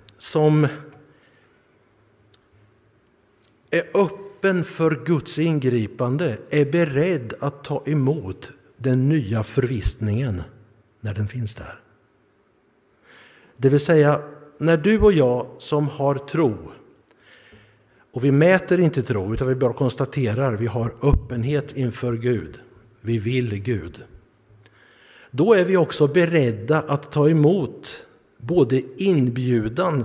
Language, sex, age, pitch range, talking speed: Swedish, male, 60-79, 115-150 Hz, 110 wpm